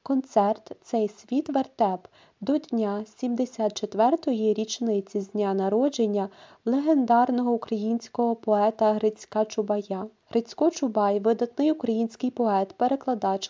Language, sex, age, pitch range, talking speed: Ukrainian, female, 30-49, 205-240 Hz, 100 wpm